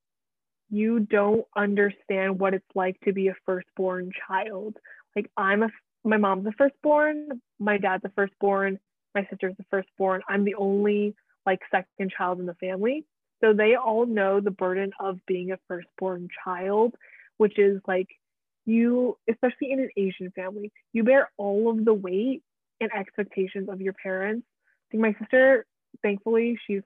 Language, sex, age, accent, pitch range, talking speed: English, female, 20-39, American, 190-225 Hz, 160 wpm